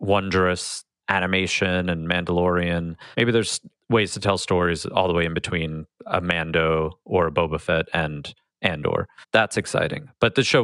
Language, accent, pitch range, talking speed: English, American, 85-105 Hz, 160 wpm